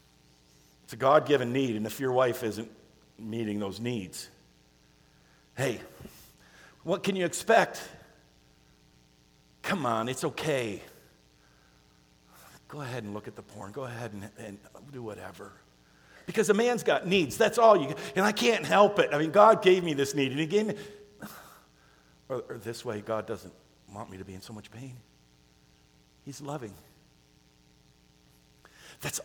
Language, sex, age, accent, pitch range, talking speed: English, male, 50-69, American, 100-155 Hz, 150 wpm